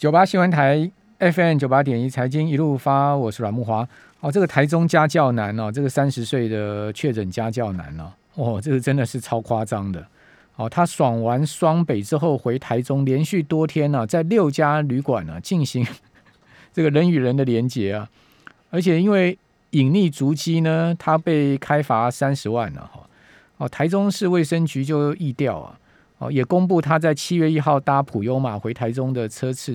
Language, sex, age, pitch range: Chinese, male, 50-69, 115-160 Hz